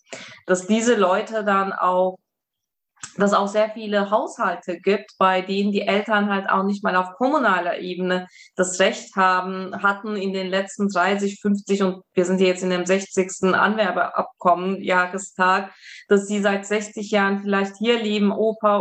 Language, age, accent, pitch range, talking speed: German, 20-39, German, 185-210 Hz, 155 wpm